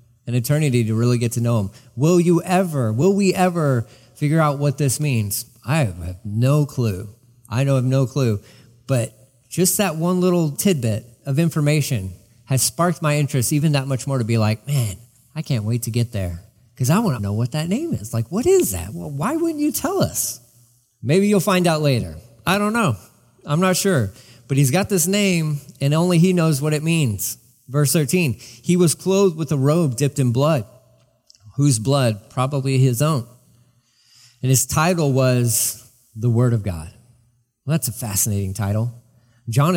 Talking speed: 190 wpm